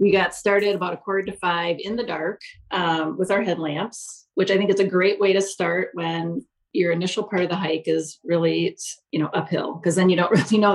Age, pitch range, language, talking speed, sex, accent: 30-49, 165-195 Hz, English, 235 wpm, female, American